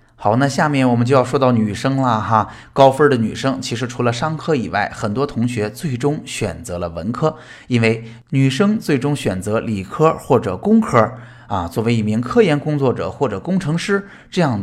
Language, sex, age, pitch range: Chinese, male, 20-39, 110-160 Hz